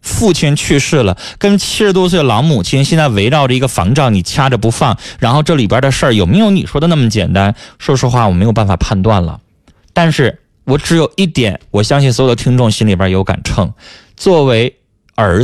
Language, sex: Chinese, male